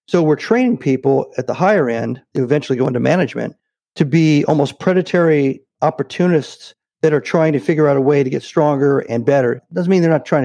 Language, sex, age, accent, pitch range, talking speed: English, male, 50-69, American, 135-175 Hz, 210 wpm